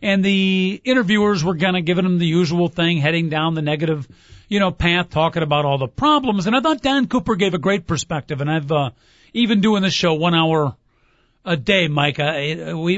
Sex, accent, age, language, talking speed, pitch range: male, American, 40-59, English, 215 wpm, 165-250 Hz